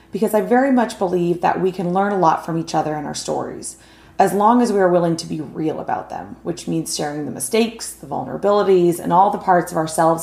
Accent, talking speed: American, 240 wpm